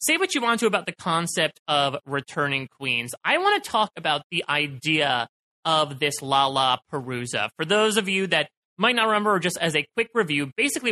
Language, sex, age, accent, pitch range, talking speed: English, male, 30-49, American, 140-190 Hz, 205 wpm